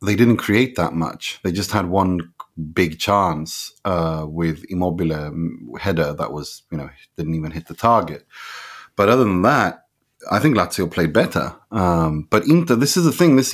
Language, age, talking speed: English, 30-49, 180 wpm